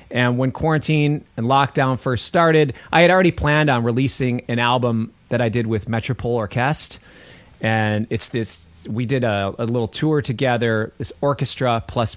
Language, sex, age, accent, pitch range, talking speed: English, male, 30-49, American, 110-145 Hz, 170 wpm